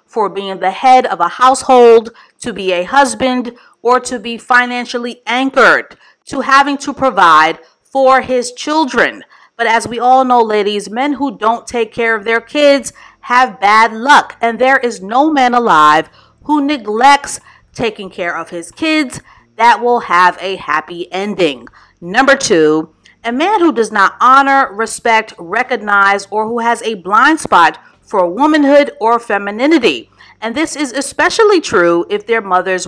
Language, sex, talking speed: English, female, 160 wpm